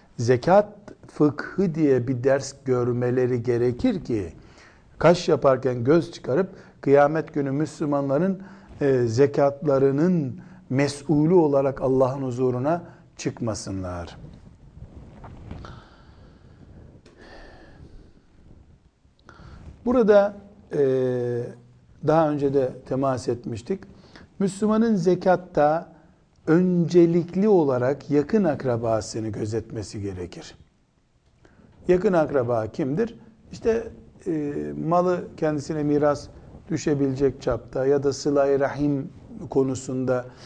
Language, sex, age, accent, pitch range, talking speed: Turkish, male, 60-79, native, 130-165 Hz, 75 wpm